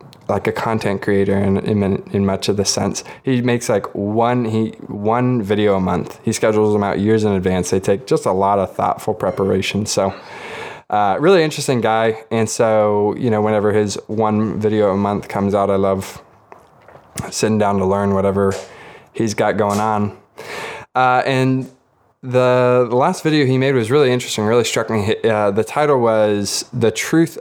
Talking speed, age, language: 180 wpm, 20-39, English